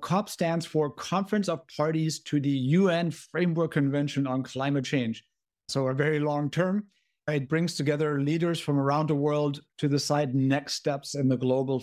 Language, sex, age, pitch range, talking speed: English, male, 50-69, 130-155 Hz, 170 wpm